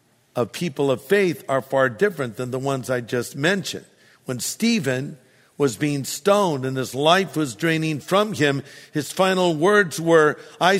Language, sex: English, male